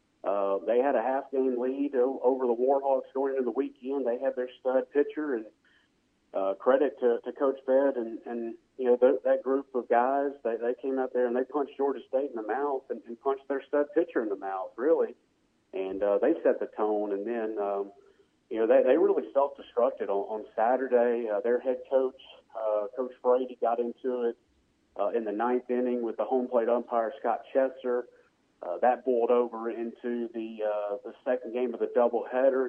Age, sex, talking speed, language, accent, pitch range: 40-59, male, 200 wpm, English, American, 115-135 Hz